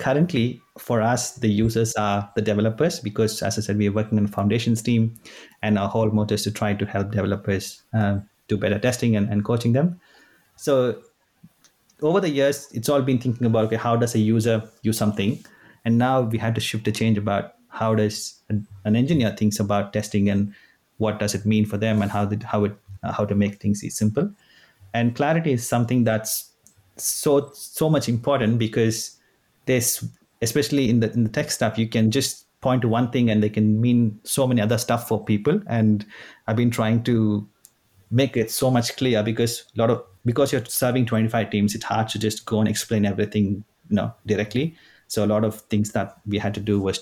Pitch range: 105-120 Hz